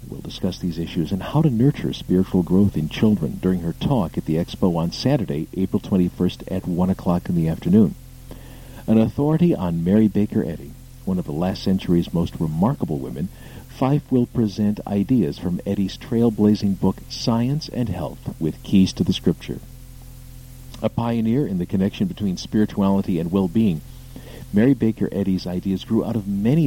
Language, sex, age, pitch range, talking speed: English, male, 50-69, 95-125 Hz, 170 wpm